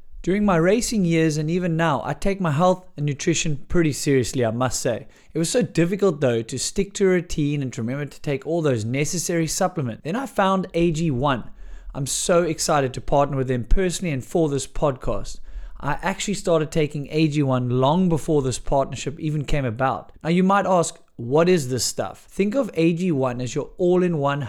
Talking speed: 195 wpm